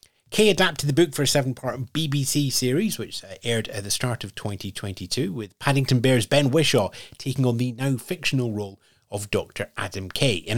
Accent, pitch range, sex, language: British, 105-140 Hz, male, English